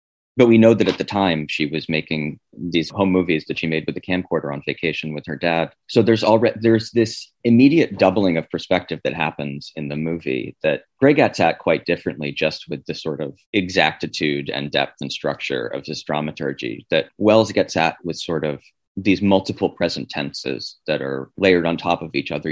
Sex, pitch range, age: male, 75-95 Hz, 30-49